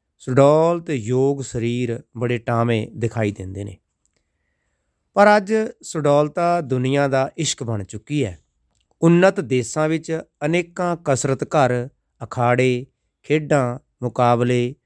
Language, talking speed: Punjabi, 100 wpm